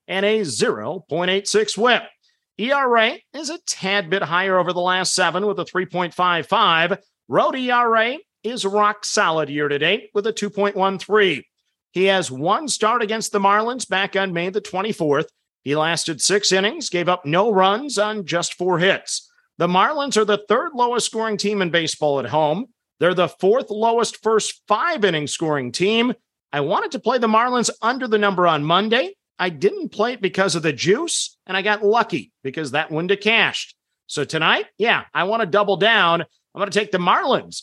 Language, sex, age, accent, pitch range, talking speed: English, male, 50-69, American, 175-225 Hz, 180 wpm